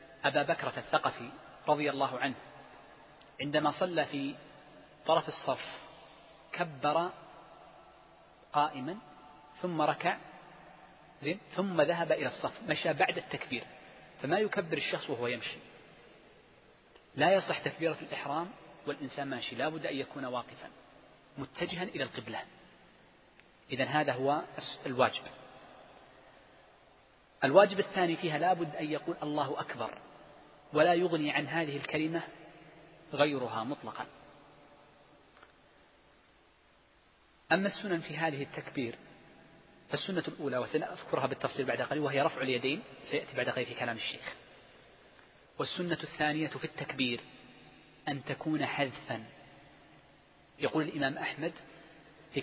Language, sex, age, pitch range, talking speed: Arabic, male, 40-59, 140-165 Hz, 105 wpm